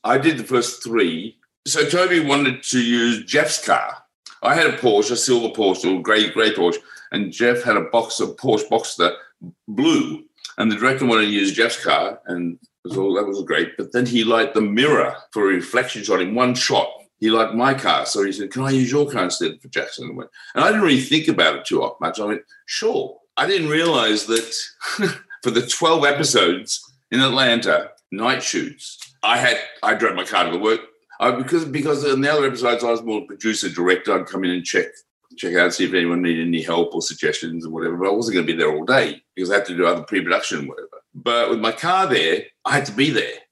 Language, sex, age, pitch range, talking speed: English, male, 50-69, 115-165 Hz, 225 wpm